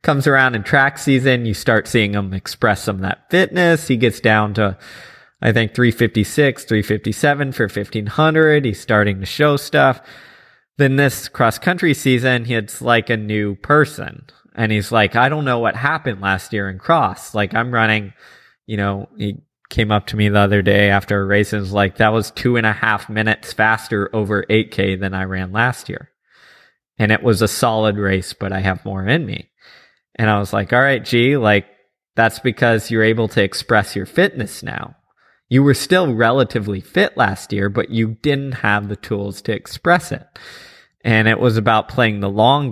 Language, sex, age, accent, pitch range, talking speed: English, male, 20-39, American, 100-125 Hz, 190 wpm